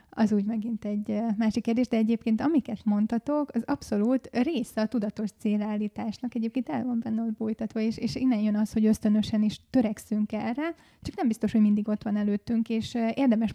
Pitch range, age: 215-230 Hz, 20-39